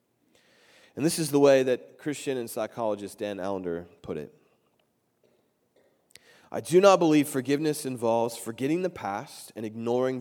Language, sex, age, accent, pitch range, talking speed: English, male, 30-49, American, 115-185 Hz, 140 wpm